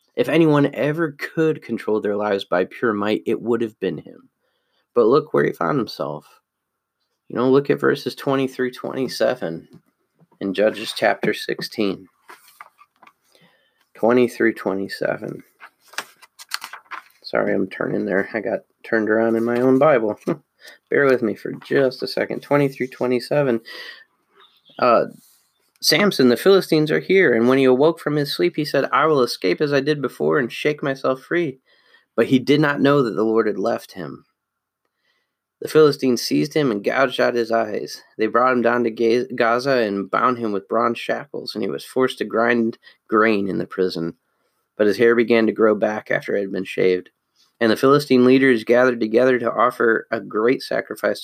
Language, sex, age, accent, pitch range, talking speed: English, male, 30-49, American, 110-140 Hz, 170 wpm